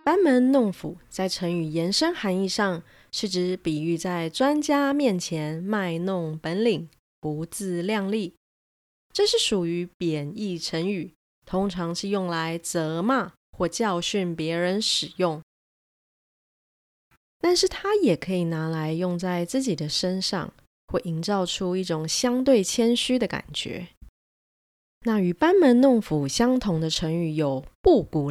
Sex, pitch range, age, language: female, 165-220 Hz, 20-39, Chinese